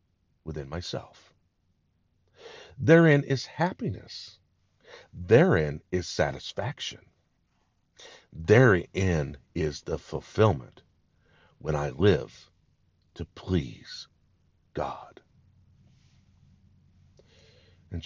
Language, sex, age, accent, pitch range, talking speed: English, male, 50-69, American, 85-115 Hz, 65 wpm